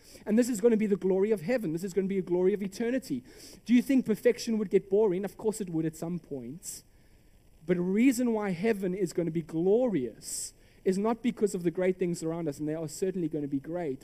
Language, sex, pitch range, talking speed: English, male, 130-185 Hz, 255 wpm